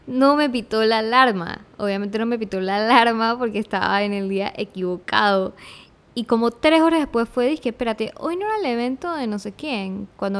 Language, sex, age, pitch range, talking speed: Spanish, female, 10-29, 200-240 Hz, 200 wpm